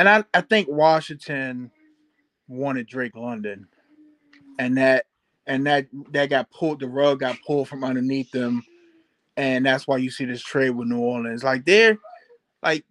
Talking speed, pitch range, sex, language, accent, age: 165 wpm, 135-175 Hz, male, English, American, 20-39